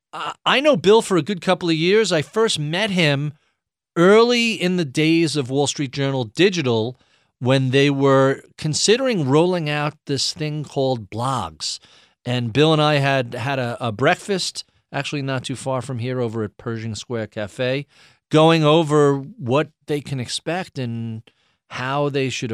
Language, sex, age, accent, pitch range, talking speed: English, male, 40-59, American, 120-150 Hz, 165 wpm